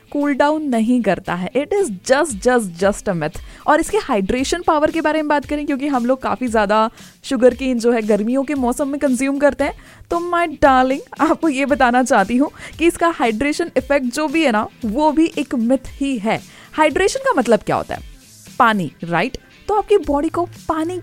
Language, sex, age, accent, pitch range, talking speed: Hindi, female, 20-39, native, 230-310 Hz, 210 wpm